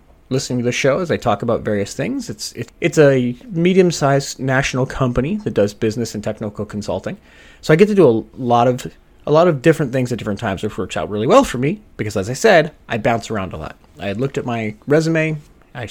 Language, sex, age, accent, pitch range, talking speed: English, male, 30-49, American, 105-140 Hz, 235 wpm